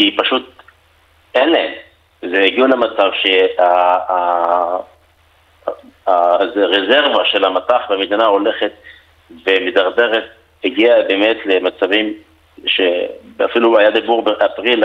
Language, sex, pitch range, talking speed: Hebrew, male, 95-125 Hz, 75 wpm